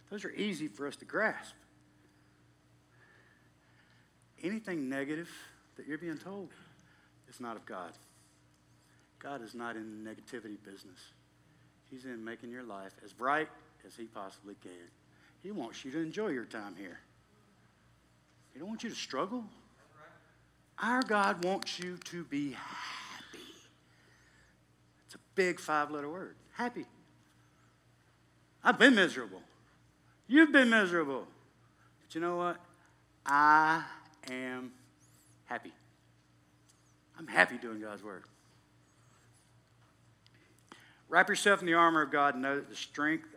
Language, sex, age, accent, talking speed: English, male, 50-69, American, 130 wpm